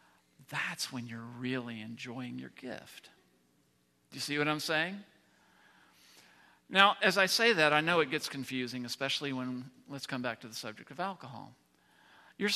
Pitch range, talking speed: 115-170 Hz, 160 wpm